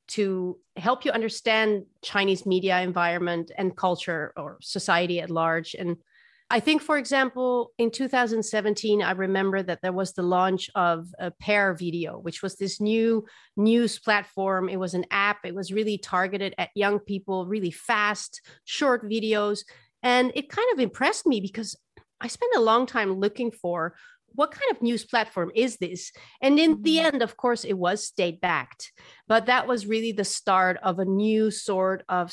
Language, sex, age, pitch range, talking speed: English, female, 40-59, 180-220 Hz, 175 wpm